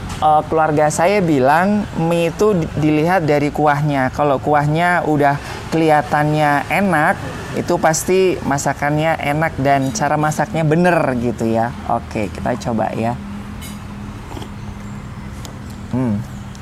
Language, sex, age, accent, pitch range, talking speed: Indonesian, male, 20-39, native, 110-160 Hz, 100 wpm